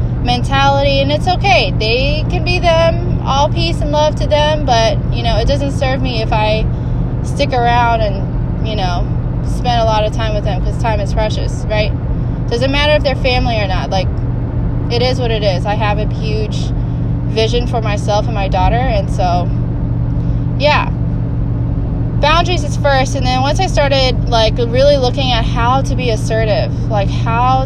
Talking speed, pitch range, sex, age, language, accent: 180 wpm, 90-130 Hz, female, 20-39, English, American